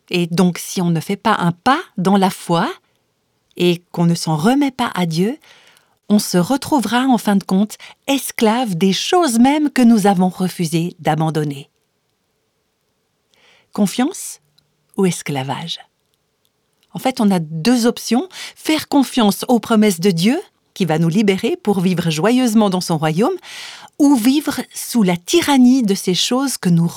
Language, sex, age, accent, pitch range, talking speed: French, female, 50-69, French, 175-255 Hz, 160 wpm